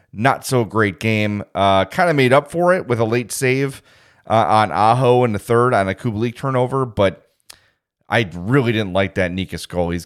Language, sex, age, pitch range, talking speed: English, male, 30-49, 105-140 Hz, 210 wpm